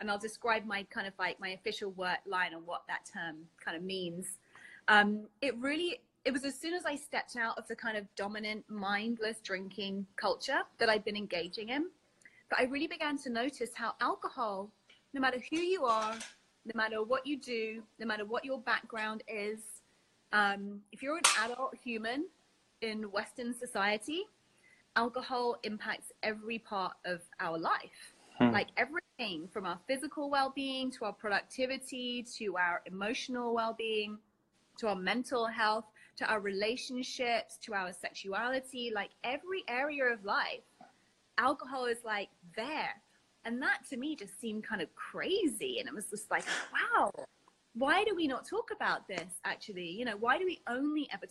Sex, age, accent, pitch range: female, 30-49, British, 205-260 Hz